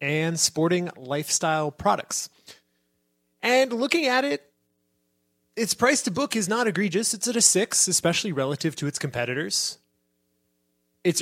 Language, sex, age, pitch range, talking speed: English, male, 20-39, 120-165 Hz, 135 wpm